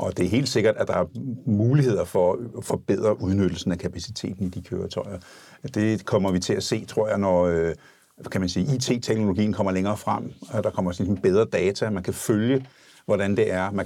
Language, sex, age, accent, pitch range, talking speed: Danish, male, 60-79, native, 95-120 Hz, 190 wpm